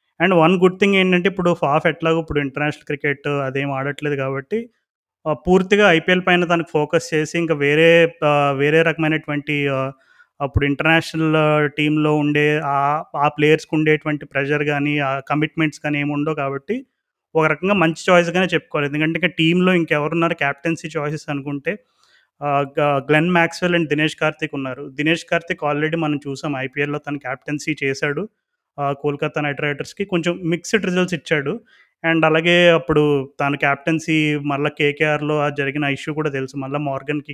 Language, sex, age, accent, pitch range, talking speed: Telugu, male, 30-49, native, 145-170 Hz, 140 wpm